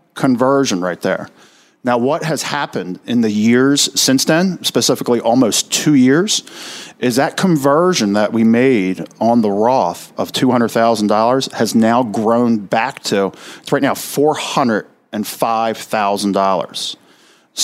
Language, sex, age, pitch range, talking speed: English, male, 50-69, 110-135 Hz, 120 wpm